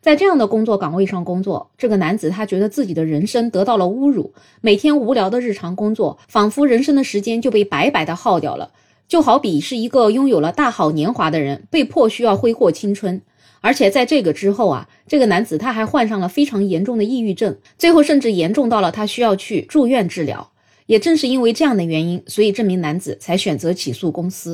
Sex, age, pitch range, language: female, 20-39, 180-255 Hz, Chinese